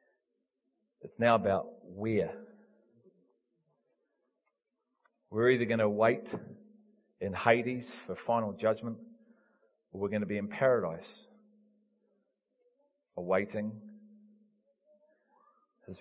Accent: Australian